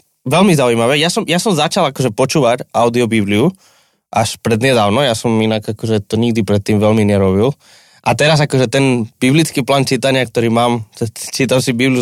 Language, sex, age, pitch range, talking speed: Slovak, male, 20-39, 110-135 Hz, 170 wpm